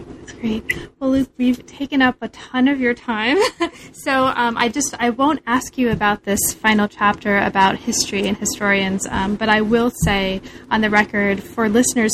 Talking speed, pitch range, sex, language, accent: 190 wpm, 210-250 Hz, female, English, American